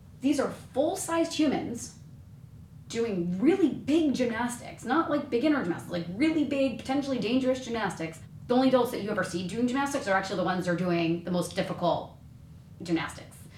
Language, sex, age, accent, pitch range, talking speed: English, female, 30-49, American, 165-240 Hz, 170 wpm